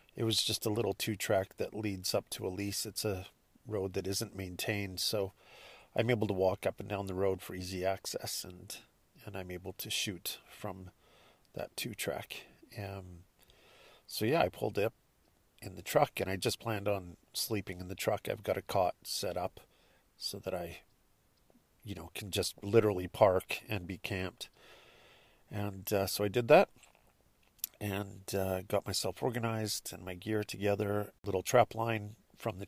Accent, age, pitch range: American, 50-69, 95-110 Hz